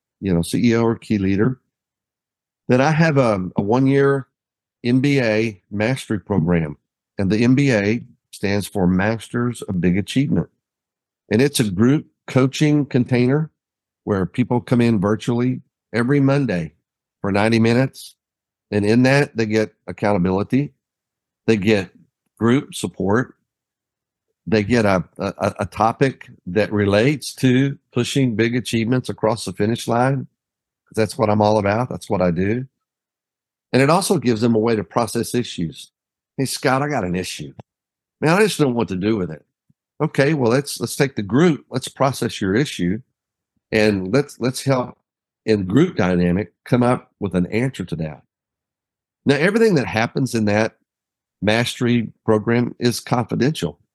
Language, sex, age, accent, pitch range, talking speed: English, male, 50-69, American, 100-130 Hz, 150 wpm